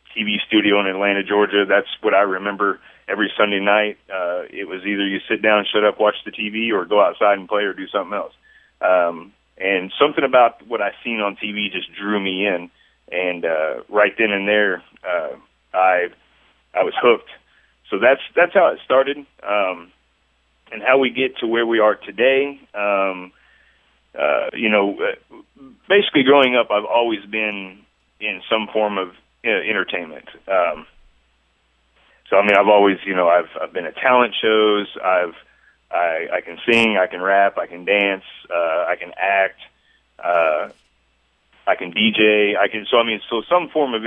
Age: 30-49